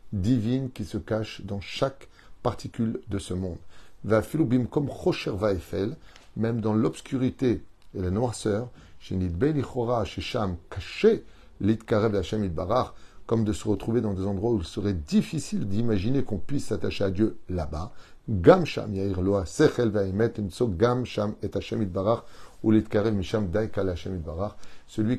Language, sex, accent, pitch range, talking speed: French, male, French, 95-115 Hz, 85 wpm